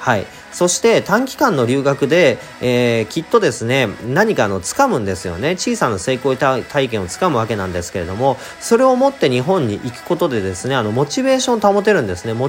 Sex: male